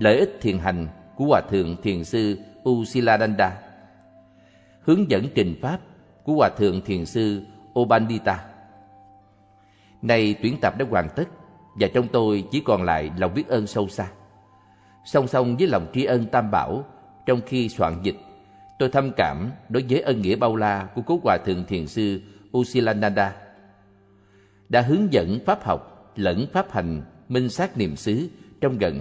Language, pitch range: Vietnamese, 95-120 Hz